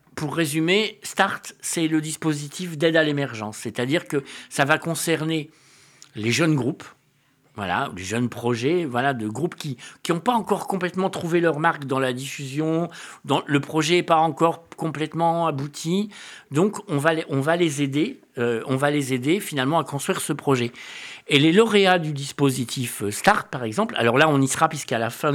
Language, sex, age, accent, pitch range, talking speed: French, male, 50-69, French, 135-180 Hz, 180 wpm